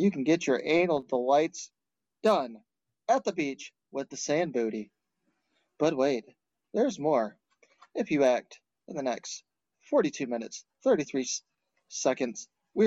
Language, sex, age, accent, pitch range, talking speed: English, male, 30-49, American, 135-180 Hz, 135 wpm